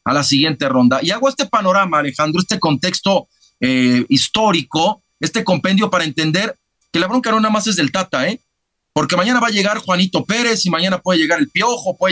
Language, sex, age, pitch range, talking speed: Spanish, male, 40-59, 165-220 Hz, 205 wpm